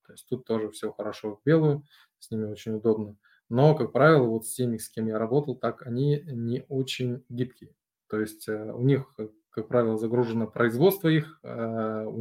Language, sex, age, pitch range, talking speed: Russian, male, 20-39, 110-135 Hz, 180 wpm